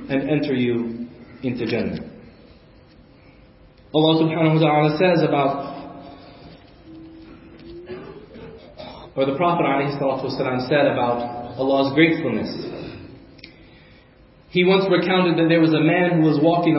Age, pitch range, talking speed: 40-59, 125-165 Hz, 120 wpm